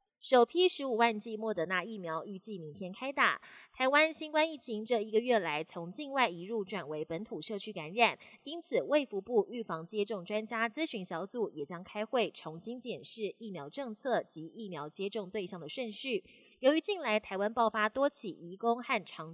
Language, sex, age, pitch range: Chinese, female, 20-39, 190-255 Hz